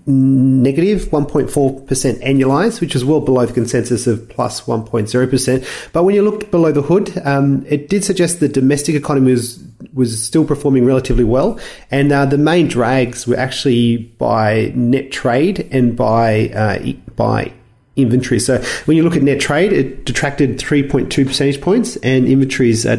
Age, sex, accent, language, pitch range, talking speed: 30-49, male, Australian, English, 125-155 Hz, 165 wpm